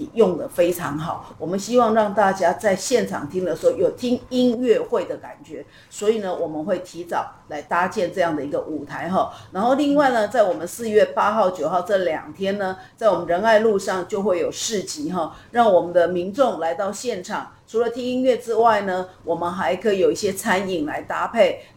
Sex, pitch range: female, 175-225 Hz